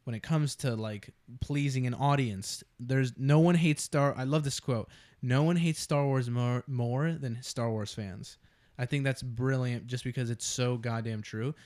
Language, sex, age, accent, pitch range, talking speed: English, male, 20-39, American, 115-140 Hz, 195 wpm